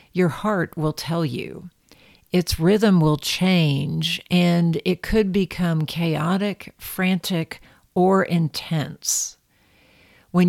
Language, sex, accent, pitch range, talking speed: English, female, American, 155-190 Hz, 105 wpm